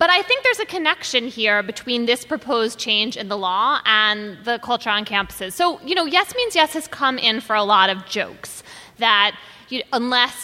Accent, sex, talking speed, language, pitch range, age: American, female, 205 wpm, English, 215-295 Hz, 20-39